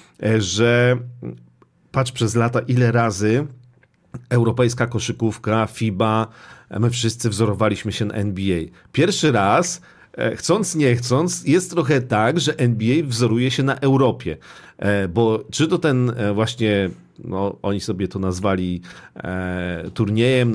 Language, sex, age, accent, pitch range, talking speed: Polish, male, 40-59, native, 100-130 Hz, 115 wpm